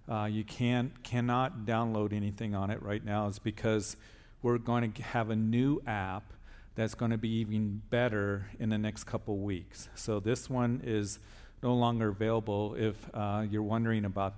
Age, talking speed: 50-69, 180 wpm